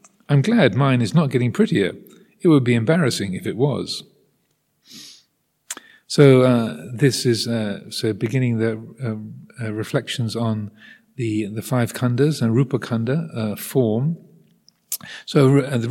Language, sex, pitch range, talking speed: English, male, 110-140 Hz, 145 wpm